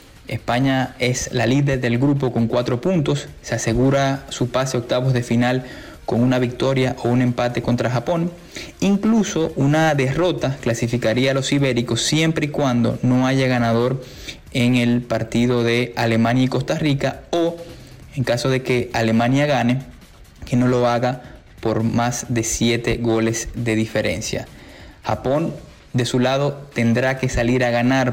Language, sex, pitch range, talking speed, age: Spanish, male, 115-135 Hz, 155 wpm, 20-39